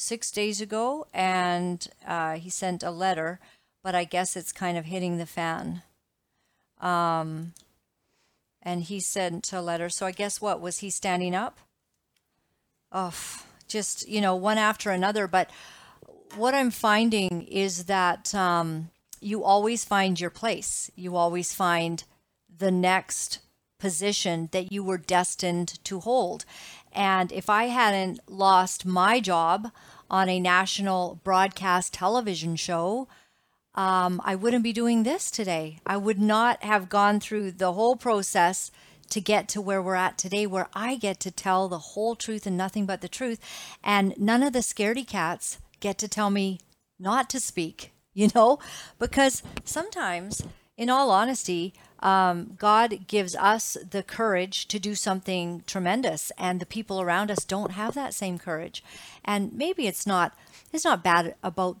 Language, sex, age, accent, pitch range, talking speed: English, female, 50-69, American, 180-215 Hz, 155 wpm